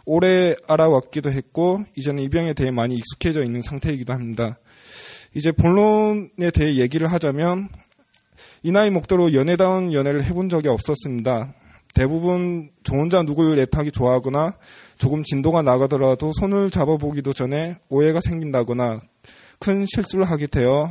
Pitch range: 130-170 Hz